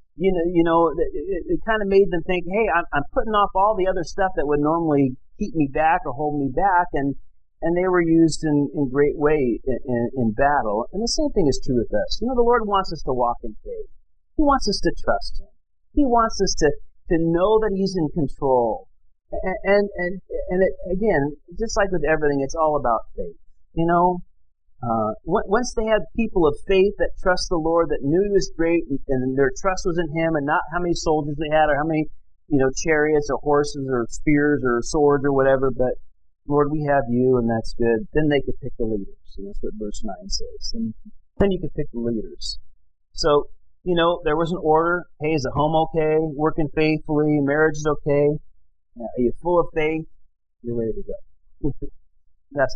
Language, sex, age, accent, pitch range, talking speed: English, male, 40-59, American, 140-185 Hz, 220 wpm